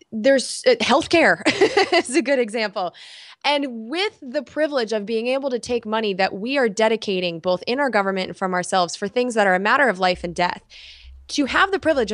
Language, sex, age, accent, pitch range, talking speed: English, female, 20-39, American, 195-270 Hz, 210 wpm